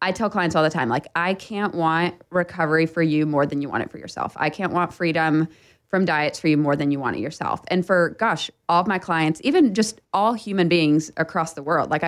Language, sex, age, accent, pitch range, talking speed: English, female, 20-39, American, 150-180 Hz, 250 wpm